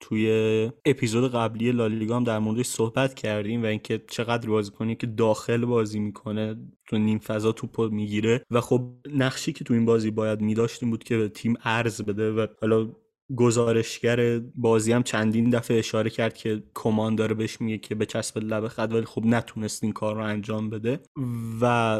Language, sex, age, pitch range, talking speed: Persian, male, 20-39, 110-125 Hz, 170 wpm